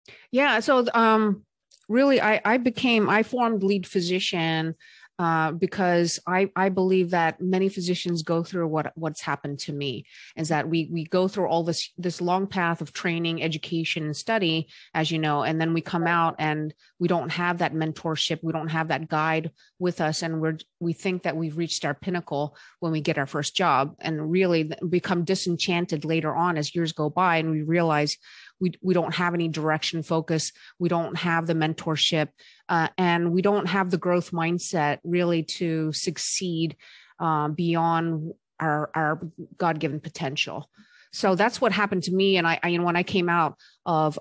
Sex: female